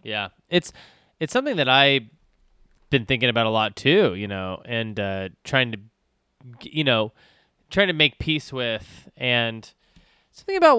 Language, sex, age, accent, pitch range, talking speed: English, male, 20-39, American, 115-160 Hz, 155 wpm